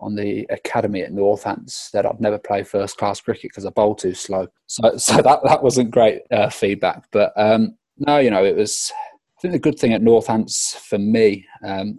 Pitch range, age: 100-115 Hz, 20-39